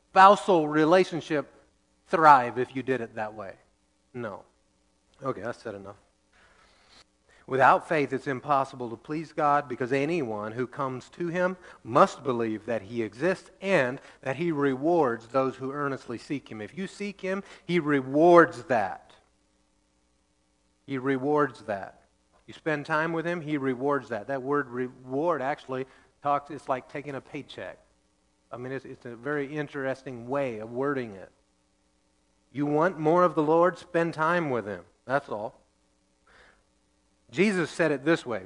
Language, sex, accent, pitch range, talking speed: English, male, American, 110-155 Hz, 150 wpm